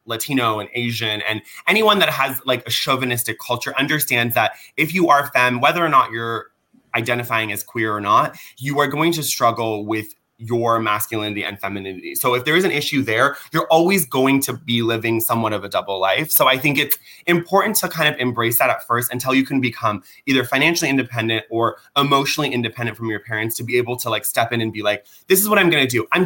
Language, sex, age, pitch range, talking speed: English, male, 30-49, 115-165 Hz, 220 wpm